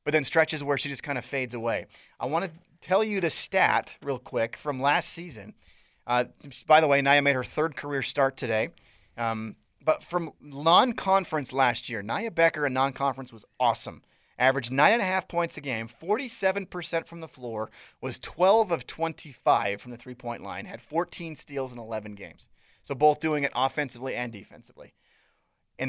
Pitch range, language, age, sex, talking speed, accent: 125-160 Hz, English, 30-49, male, 175 wpm, American